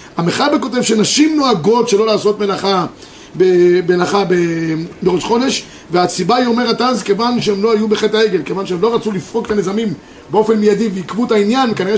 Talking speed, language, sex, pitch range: 160 wpm, Hebrew, male, 200-245 Hz